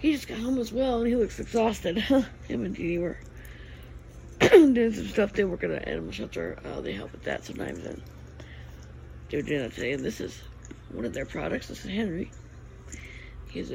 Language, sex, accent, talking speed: English, female, American, 195 wpm